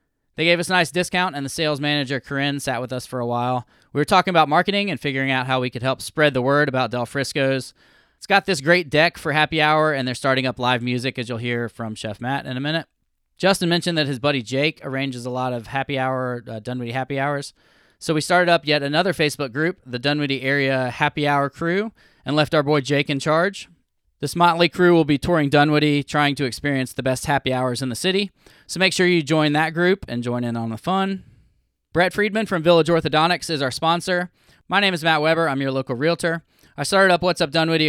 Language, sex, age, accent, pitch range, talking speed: English, male, 20-39, American, 130-165 Hz, 235 wpm